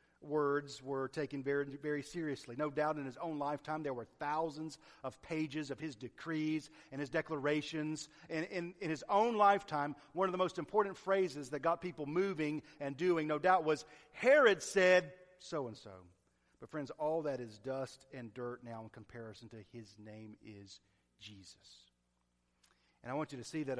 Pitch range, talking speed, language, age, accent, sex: 95-145 Hz, 180 wpm, English, 40-59, American, male